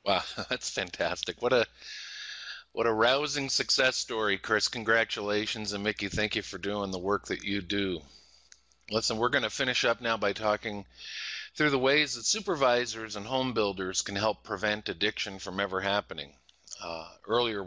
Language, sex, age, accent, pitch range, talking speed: English, male, 50-69, American, 100-120 Hz, 165 wpm